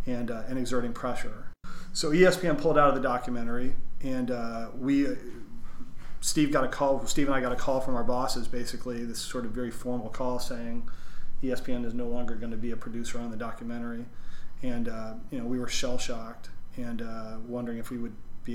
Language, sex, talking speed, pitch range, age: English, male, 205 wpm, 115-130 Hz, 30-49